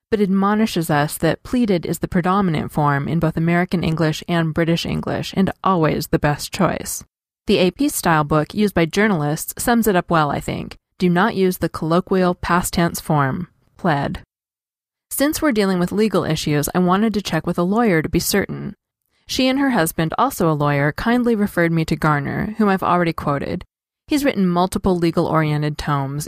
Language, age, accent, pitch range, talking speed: English, 20-39, American, 155-200 Hz, 185 wpm